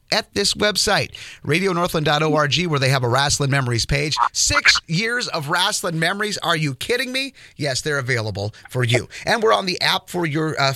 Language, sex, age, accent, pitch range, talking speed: English, male, 30-49, American, 140-180 Hz, 185 wpm